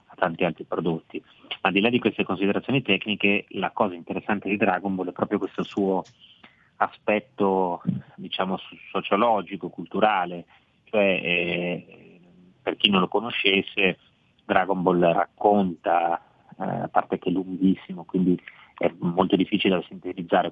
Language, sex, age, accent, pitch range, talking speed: Italian, male, 30-49, native, 90-100 Hz, 135 wpm